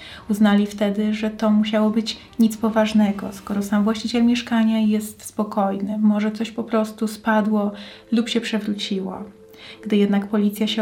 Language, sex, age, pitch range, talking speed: Polish, female, 20-39, 210-225 Hz, 145 wpm